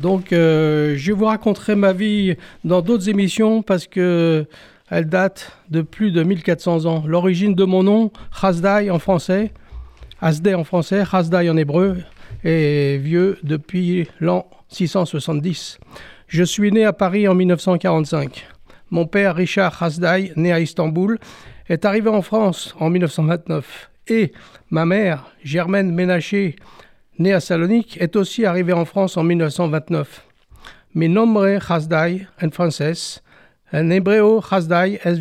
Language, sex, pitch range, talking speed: French, male, 165-190 Hz, 140 wpm